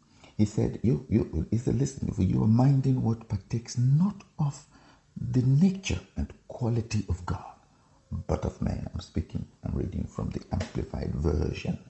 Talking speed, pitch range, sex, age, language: 160 wpm, 80-115 Hz, male, 50-69, English